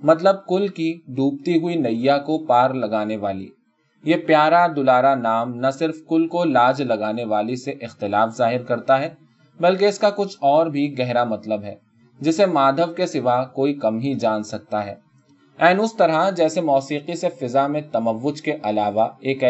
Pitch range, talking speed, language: 120-165 Hz, 175 wpm, Urdu